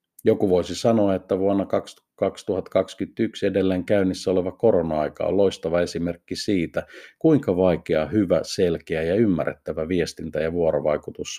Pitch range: 85-115 Hz